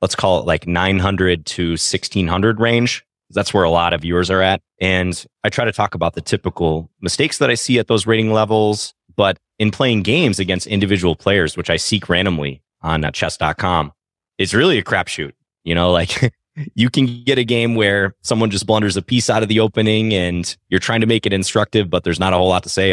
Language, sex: English, male